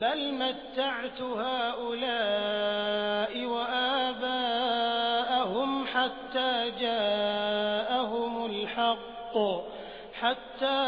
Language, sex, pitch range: Hindi, male, 230-265 Hz